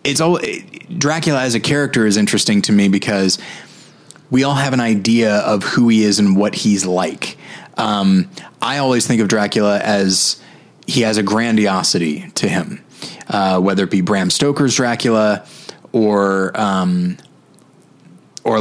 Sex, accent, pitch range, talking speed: male, American, 105-130 Hz, 150 wpm